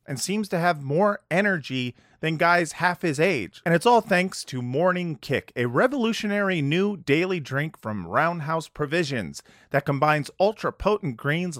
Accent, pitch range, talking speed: American, 130-185 Hz, 155 wpm